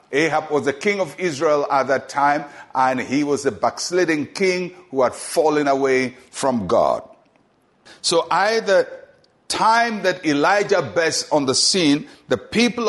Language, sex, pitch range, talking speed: English, male, 130-165 Hz, 155 wpm